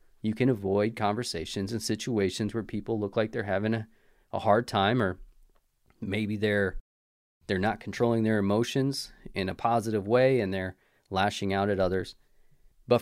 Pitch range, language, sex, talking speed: 95-125 Hz, English, male, 160 wpm